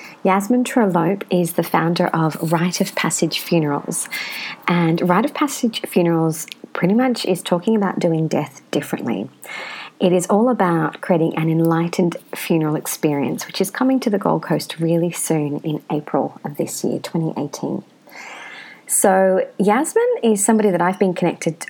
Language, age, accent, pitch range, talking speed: English, 30-49, Australian, 160-190 Hz, 150 wpm